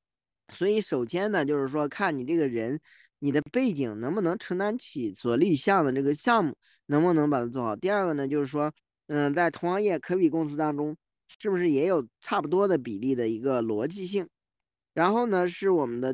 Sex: male